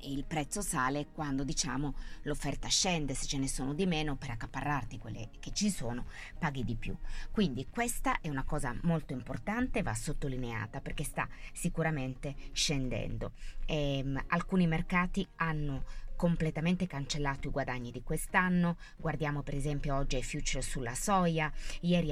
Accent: native